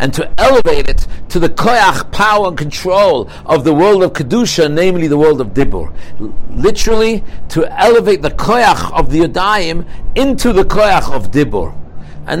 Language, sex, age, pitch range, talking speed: English, male, 60-79, 145-220 Hz, 170 wpm